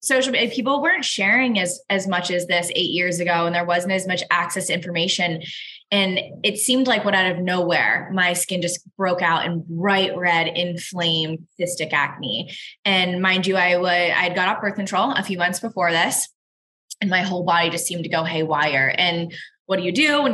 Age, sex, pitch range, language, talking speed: 20-39, female, 175-205 Hz, English, 210 wpm